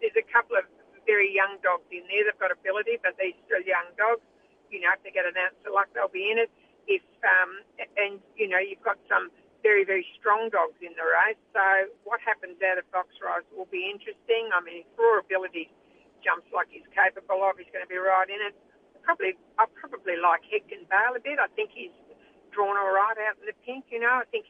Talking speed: 230 wpm